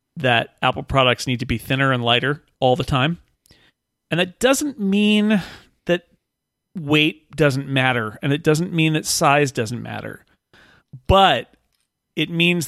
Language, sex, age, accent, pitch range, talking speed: English, male, 40-59, American, 125-160 Hz, 145 wpm